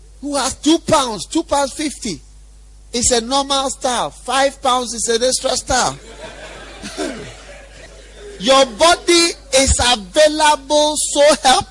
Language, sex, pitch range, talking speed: English, male, 225-335 Hz, 120 wpm